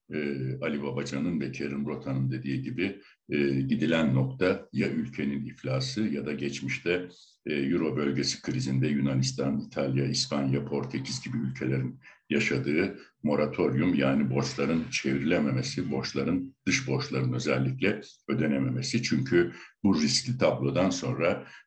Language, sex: Turkish, male